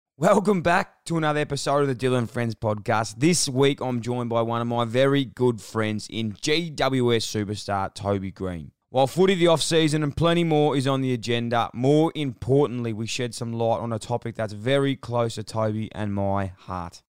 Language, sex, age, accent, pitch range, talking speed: English, male, 20-39, Australian, 110-145 Hz, 190 wpm